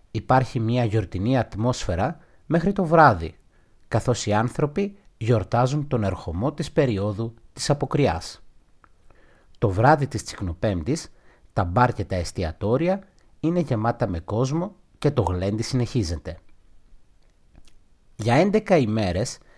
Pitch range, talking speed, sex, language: 95-140 Hz, 110 wpm, male, Greek